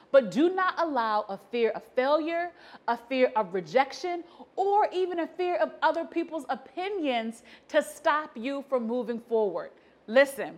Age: 30-49